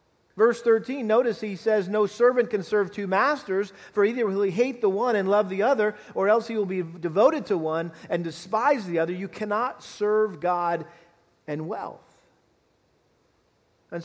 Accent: American